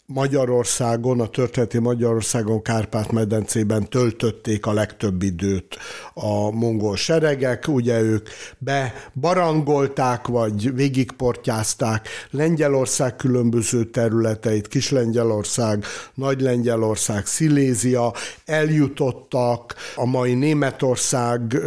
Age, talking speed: 60-79, 75 wpm